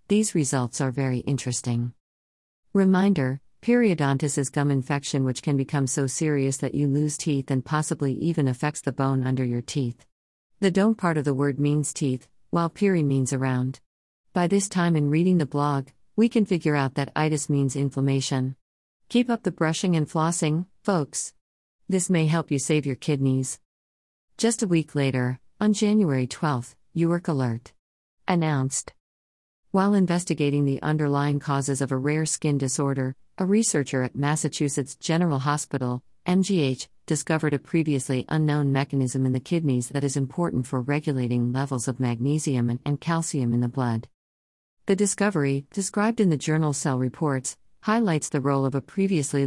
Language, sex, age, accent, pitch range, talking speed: English, female, 50-69, American, 130-160 Hz, 160 wpm